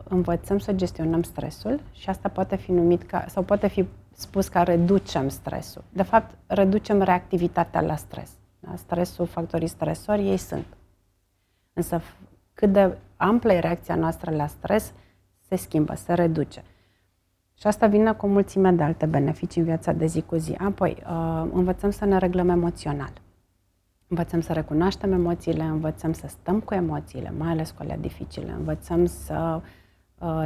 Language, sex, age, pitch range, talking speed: Romanian, female, 30-49, 150-180 Hz, 155 wpm